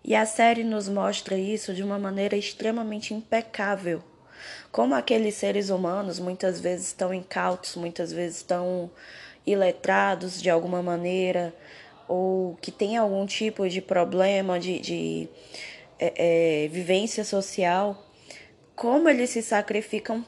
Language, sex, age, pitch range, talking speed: Portuguese, female, 10-29, 180-215 Hz, 120 wpm